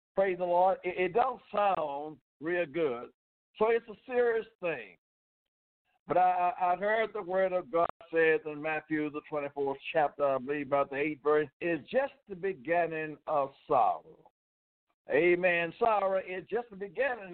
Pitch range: 155-195 Hz